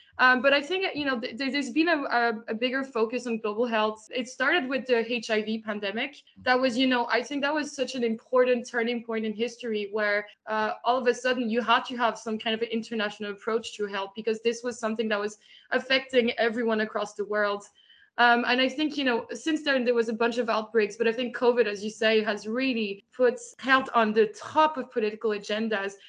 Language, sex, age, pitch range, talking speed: English, female, 20-39, 225-260 Hz, 220 wpm